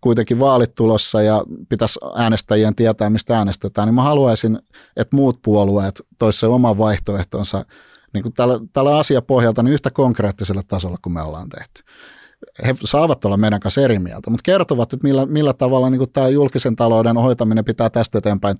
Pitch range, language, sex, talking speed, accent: 105-130 Hz, Finnish, male, 170 wpm, native